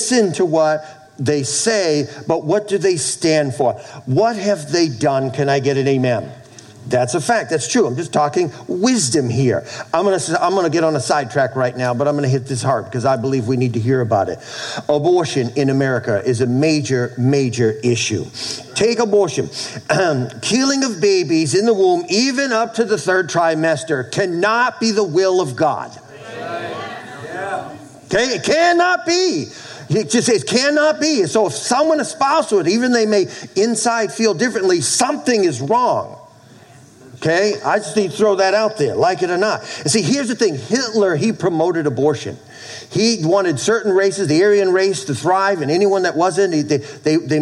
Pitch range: 140-215 Hz